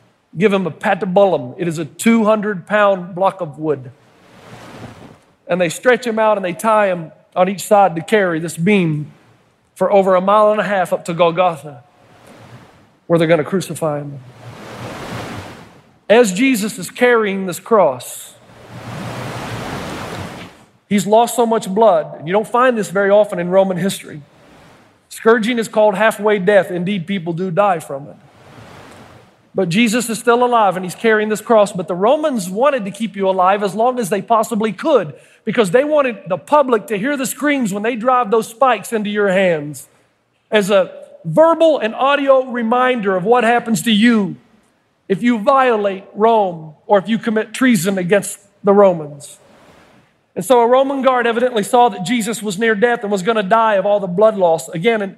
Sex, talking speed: male, 175 wpm